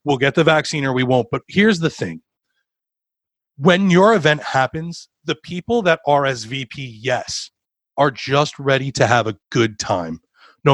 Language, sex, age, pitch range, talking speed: English, male, 30-49, 120-150 Hz, 160 wpm